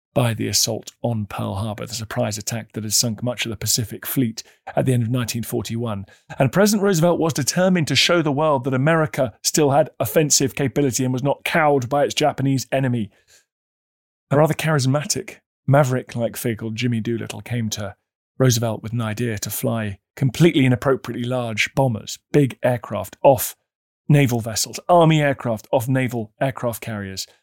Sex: male